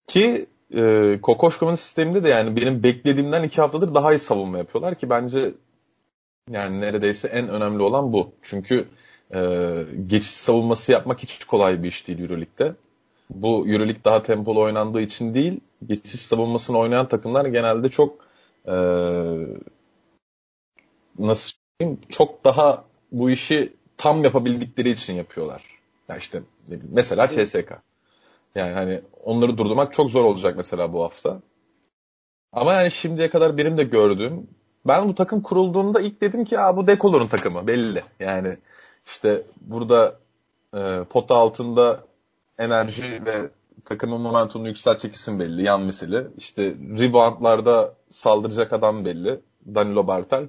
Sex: male